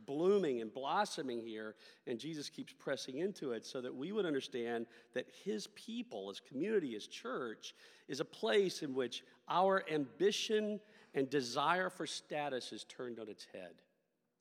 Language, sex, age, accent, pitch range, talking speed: English, male, 50-69, American, 125-195 Hz, 160 wpm